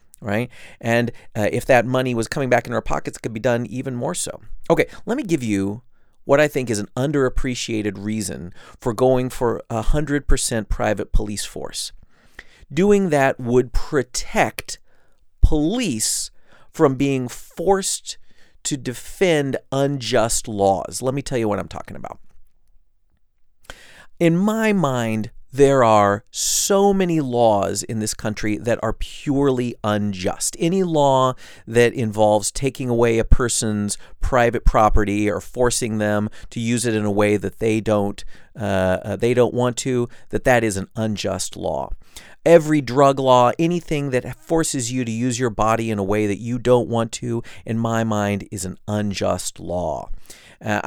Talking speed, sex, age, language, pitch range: 160 wpm, male, 40-59, English, 105-140 Hz